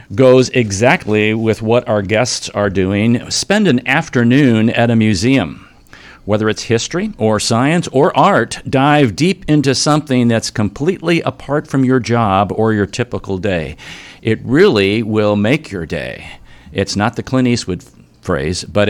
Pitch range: 105-130 Hz